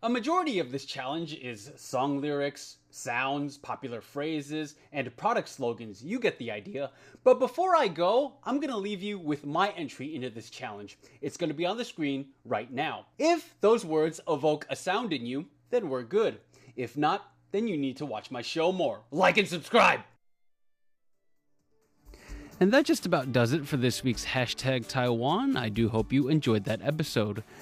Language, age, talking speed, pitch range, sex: English, 30-49, 185 wpm, 120-170 Hz, male